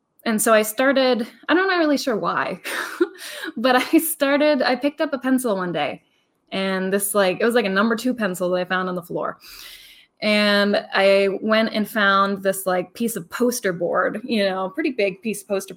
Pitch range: 195-255 Hz